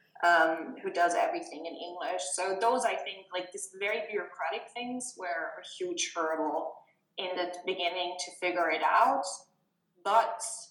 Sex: female